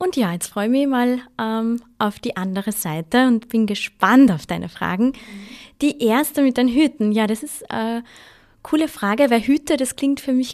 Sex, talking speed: female, 200 wpm